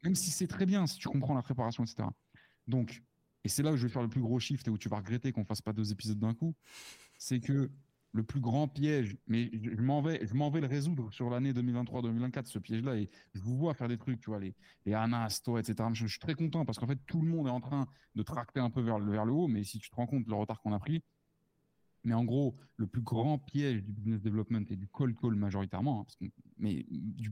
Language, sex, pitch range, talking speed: French, male, 110-145 Hz, 270 wpm